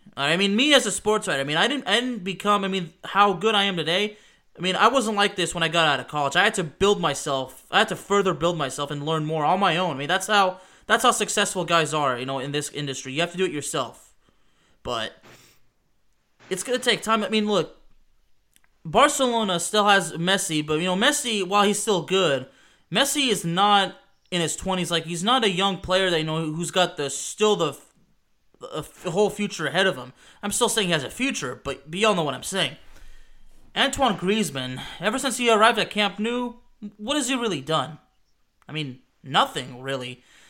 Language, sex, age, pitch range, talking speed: English, male, 20-39, 160-210 Hz, 215 wpm